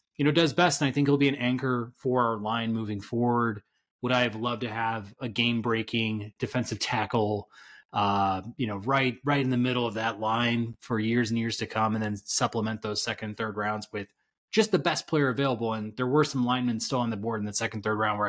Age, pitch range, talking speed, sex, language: 20-39, 110-135 Hz, 235 wpm, male, English